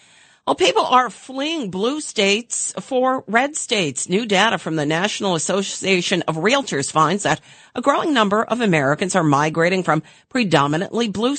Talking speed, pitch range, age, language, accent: 155 wpm, 155-205 Hz, 50-69, English, American